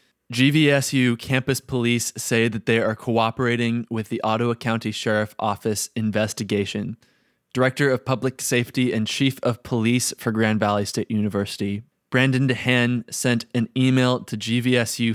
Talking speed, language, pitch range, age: 140 wpm, English, 110-125 Hz, 20-39